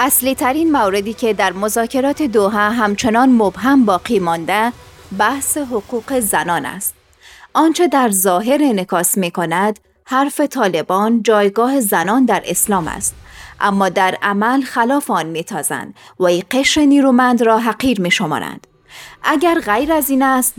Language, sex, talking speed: Persian, female, 135 wpm